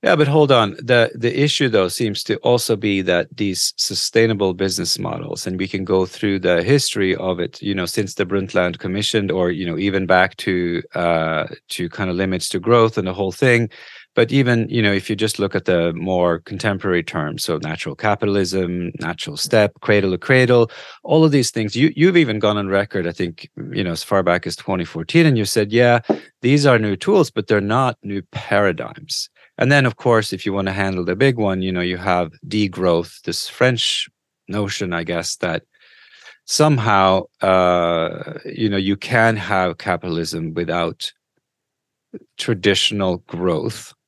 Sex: male